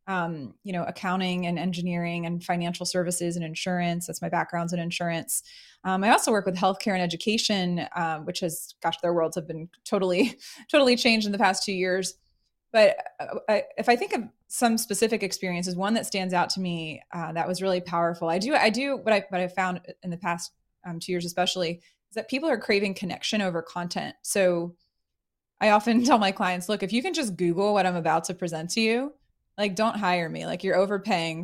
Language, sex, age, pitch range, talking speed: English, female, 20-39, 175-210 Hz, 210 wpm